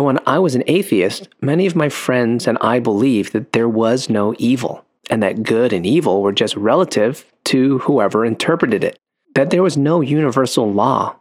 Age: 30-49